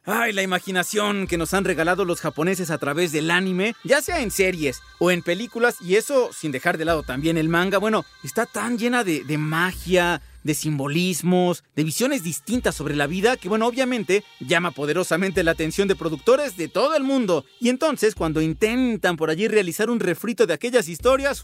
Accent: Mexican